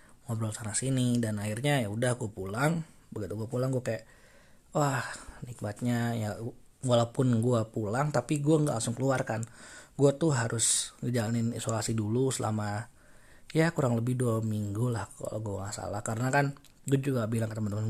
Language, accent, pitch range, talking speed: Indonesian, native, 110-135 Hz, 165 wpm